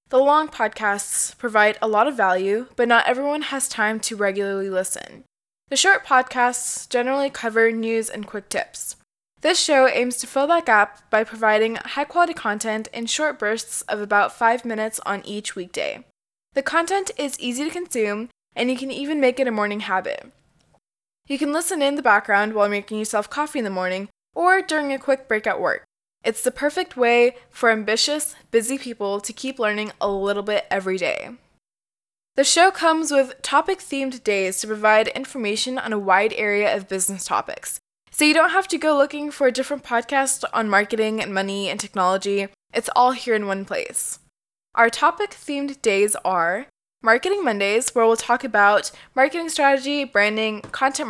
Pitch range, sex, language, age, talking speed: 210-275 Hz, female, English, 10-29, 175 wpm